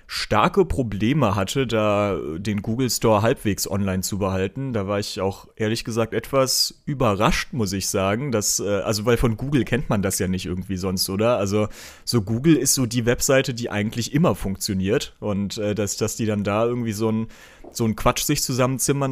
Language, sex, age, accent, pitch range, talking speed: German, male, 30-49, German, 100-125 Hz, 190 wpm